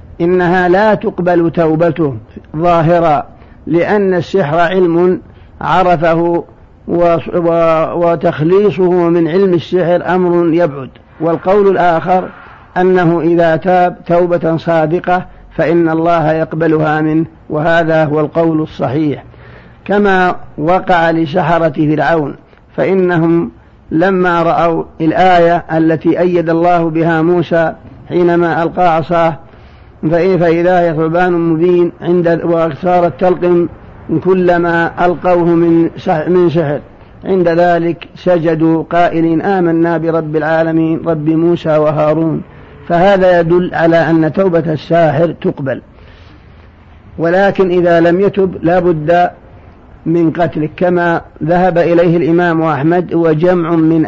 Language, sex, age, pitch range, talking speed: Arabic, male, 50-69, 160-175 Hz, 100 wpm